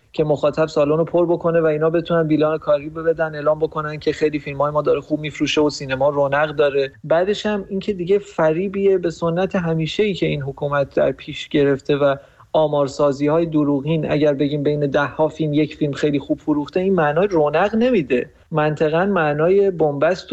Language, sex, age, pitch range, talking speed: Persian, male, 30-49, 140-160 Hz, 185 wpm